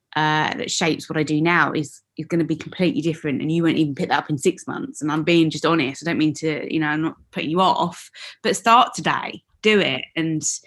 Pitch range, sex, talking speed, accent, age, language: 155-185 Hz, female, 260 wpm, British, 20-39, English